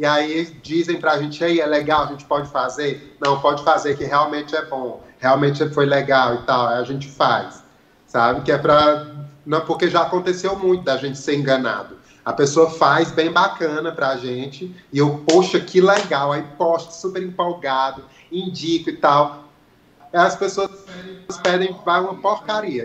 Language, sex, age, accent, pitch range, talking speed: Portuguese, male, 30-49, Brazilian, 145-180 Hz, 170 wpm